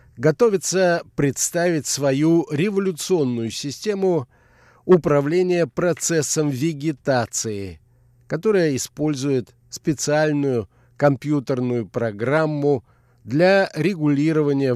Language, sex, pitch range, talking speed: Russian, male, 120-155 Hz, 60 wpm